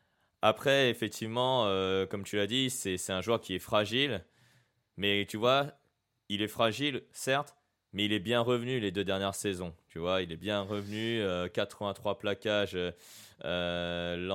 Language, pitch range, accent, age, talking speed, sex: French, 100-125 Hz, French, 20-39, 165 wpm, male